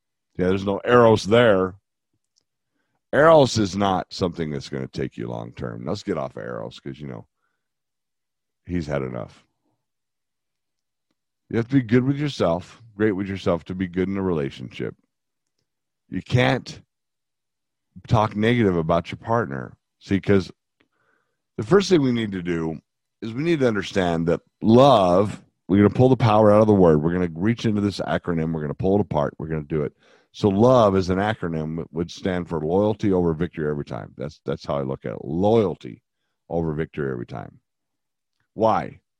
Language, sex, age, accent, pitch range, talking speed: English, male, 50-69, American, 85-120 Hz, 185 wpm